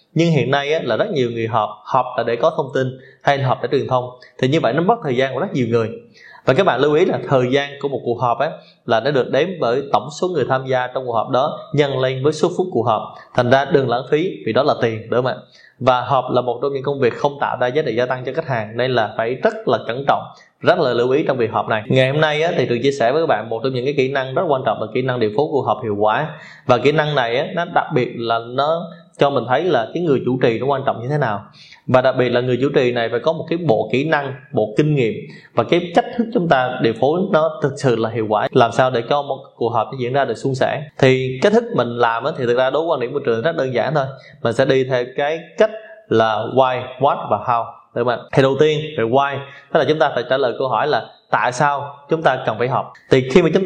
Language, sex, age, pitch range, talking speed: Vietnamese, male, 20-39, 120-150 Hz, 295 wpm